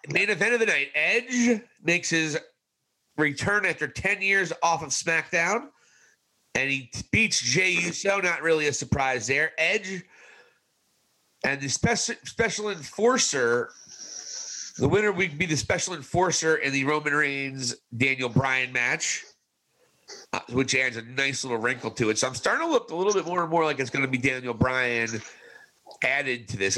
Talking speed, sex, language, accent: 165 wpm, male, English, American